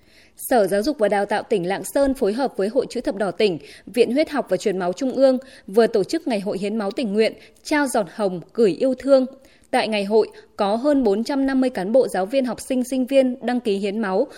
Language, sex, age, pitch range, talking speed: Vietnamese, female, 20-39, 210-270 Hz, 240 wpm